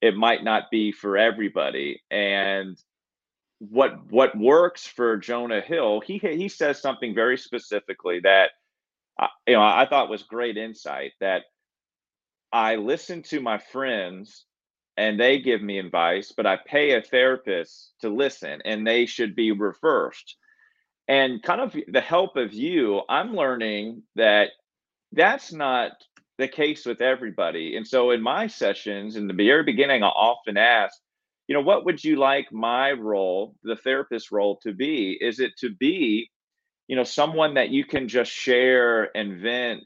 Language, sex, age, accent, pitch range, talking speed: English, male, 40-59, American, 105-140 Hz, 160 wpm